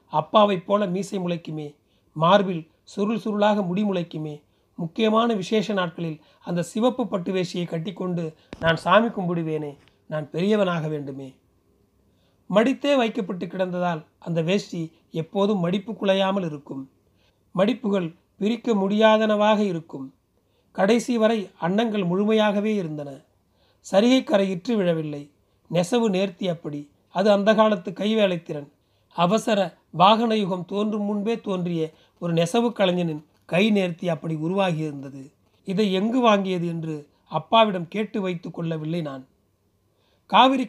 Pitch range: 160-210 Hz